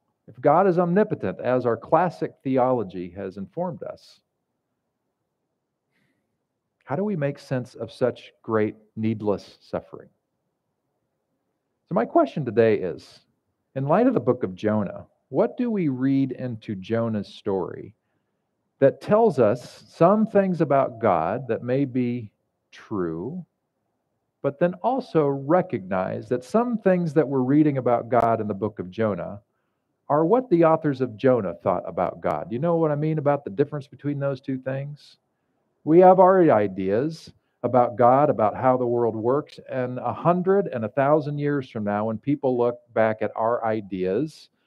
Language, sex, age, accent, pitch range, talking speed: English, male, 50-69, American, 115-165 Hz, 155 wpm